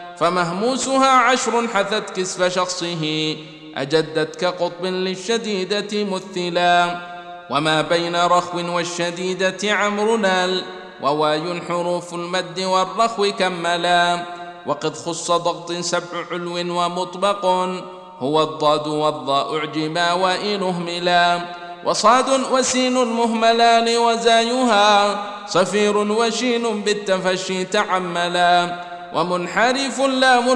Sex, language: male, Arabic